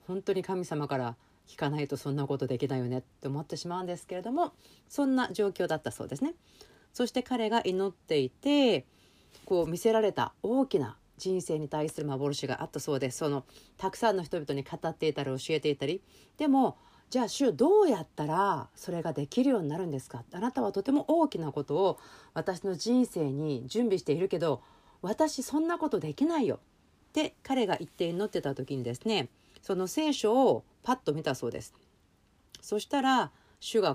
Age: 40-59